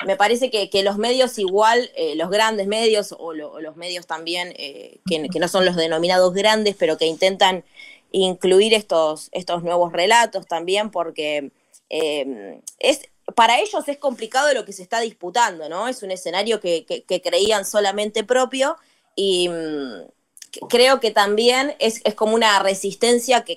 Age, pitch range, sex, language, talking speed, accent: 20-39, 180-245 Hz, female, Spanish, 165 wpm, Argentinian